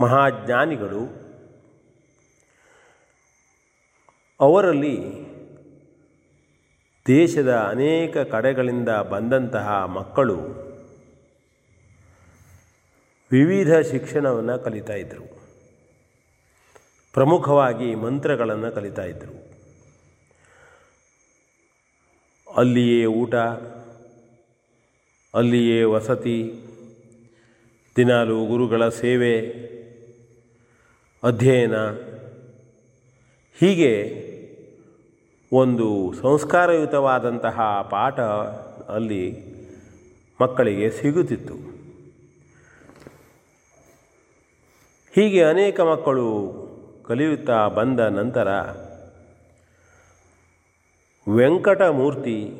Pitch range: 105-130 Hz